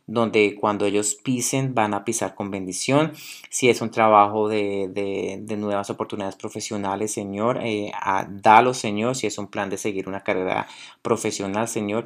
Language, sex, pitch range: Spanish, male, 105-120 Hz